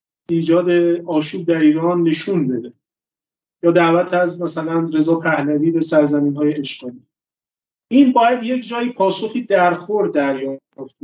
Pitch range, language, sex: 165-200 Hz, Persian, male